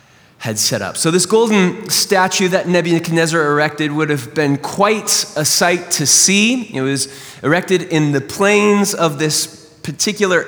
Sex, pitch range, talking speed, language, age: male, 150-210 Hz, 155 wpm, English, 20-39